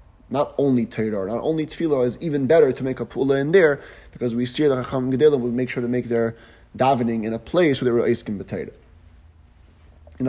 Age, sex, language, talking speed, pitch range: 20-39, male, English, 210 wpm, 110-140 Hz